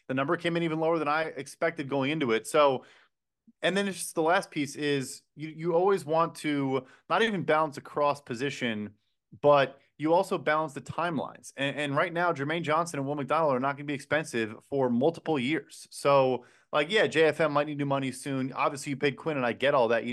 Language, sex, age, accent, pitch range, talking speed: English, male, 20-39, American, 135-170 Hz, 220 wpm